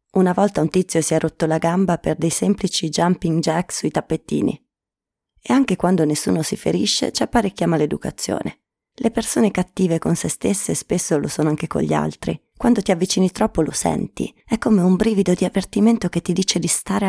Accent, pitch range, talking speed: native, 165-210 Hz, 195 wpm